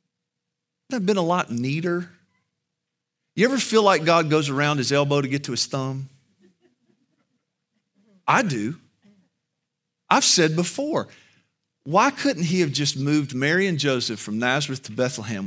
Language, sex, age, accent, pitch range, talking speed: English, male, 40-59, American, 135-210 Hz, 145 wpm